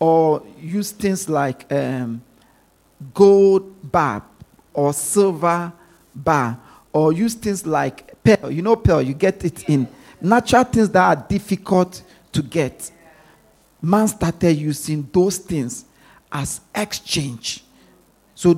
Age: 50-69